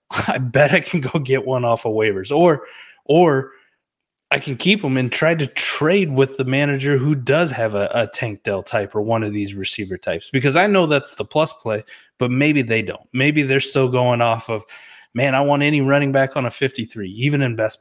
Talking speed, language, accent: 220 wpm, English, American